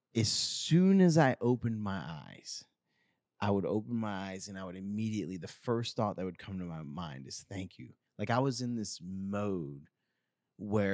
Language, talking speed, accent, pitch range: English, 190 wpm, American, 95-115 Hz